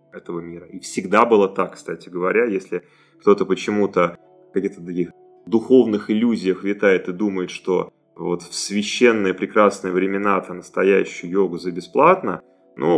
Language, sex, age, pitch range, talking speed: Russian, male, 30-49, 90-120 Hz, 145 wpm